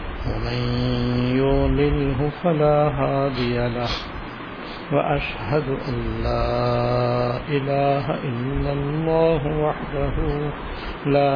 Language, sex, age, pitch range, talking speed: Urdu, male, 60-79, 120-150 Hz, 70 wpm